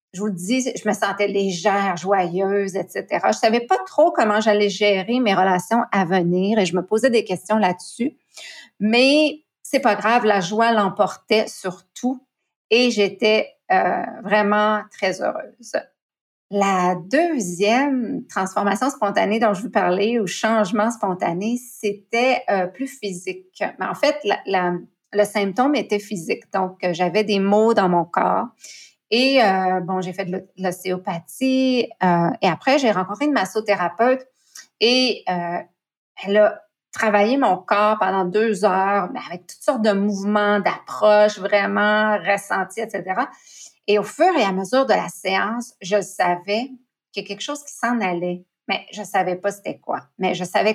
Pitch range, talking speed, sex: 190-235 Hz, 155 wpm, female